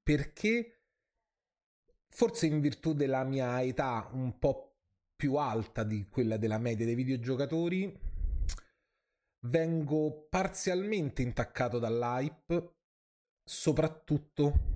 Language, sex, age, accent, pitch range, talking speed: Italian, male, 30-49, native, 115-150 Hz, 90 wpm